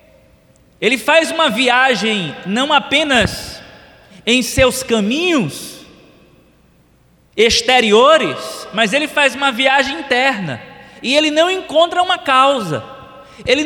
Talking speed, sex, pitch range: 100 wpm, male, 225-275 Hz